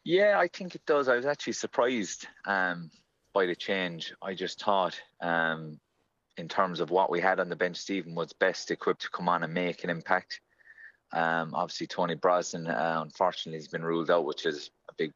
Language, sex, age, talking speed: English, male, 30-49, 200 wpm